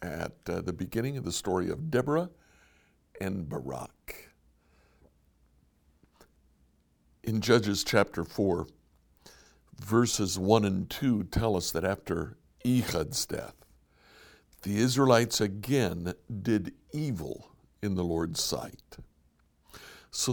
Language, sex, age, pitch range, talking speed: English, male, 60-79, 80-125 Hz, 105 wpm